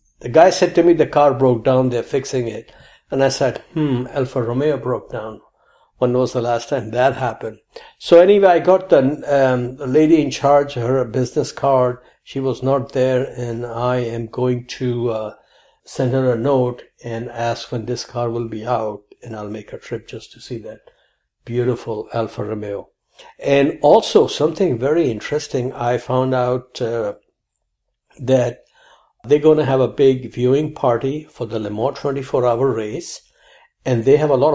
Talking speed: 180 wpm